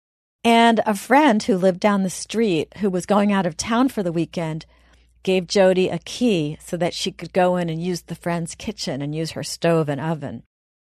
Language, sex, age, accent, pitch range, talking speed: English, female, 40-59, American, 150-195 Hz, 210 wpm